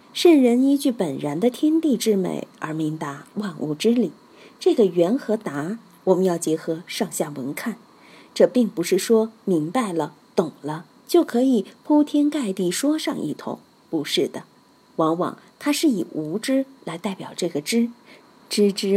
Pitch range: 180-270 Hz